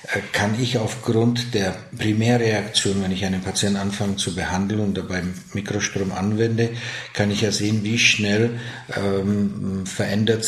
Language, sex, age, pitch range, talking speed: German, male, 50-69, 100-115 Hz, 135 wpm